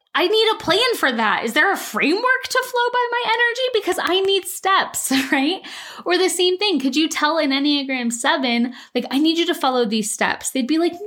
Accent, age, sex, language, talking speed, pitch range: American, 20-39, female, English, 220 wpm, 220-295 Hz